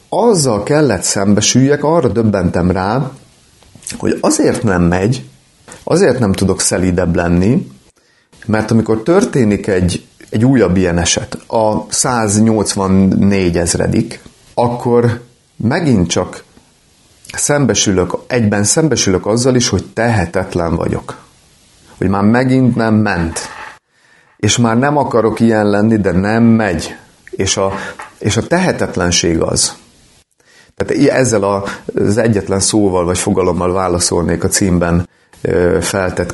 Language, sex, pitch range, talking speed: Hungarian, male, 90-115 Hz, 110 wpm